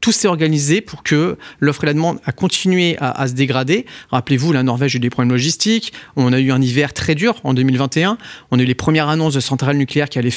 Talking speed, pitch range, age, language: 250 wpm, 130-170 Hz, 40-59, French